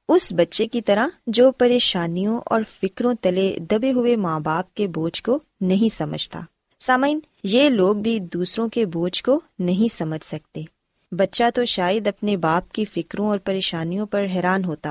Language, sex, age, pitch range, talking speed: Urdu, female, 20-39, 180-250 Hz, 120 wpm